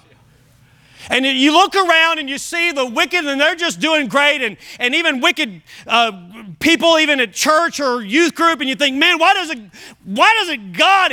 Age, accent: 40-59, American